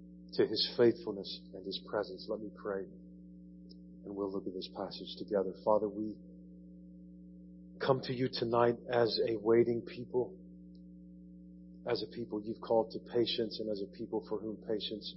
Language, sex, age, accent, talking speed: English, male, 40-59, American, 160 wpm